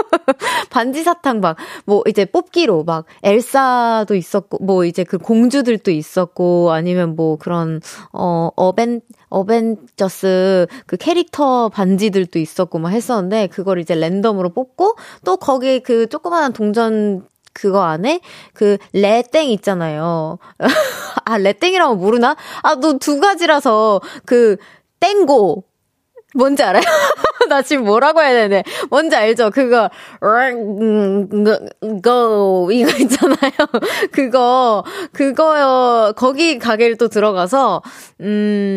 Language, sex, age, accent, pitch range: Korean, female, 20-39, native, 185-260 Hz